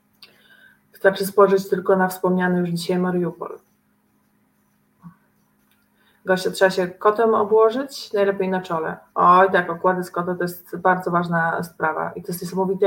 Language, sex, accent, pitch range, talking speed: Polish, female, native, 185-210 Hz, 130 wpm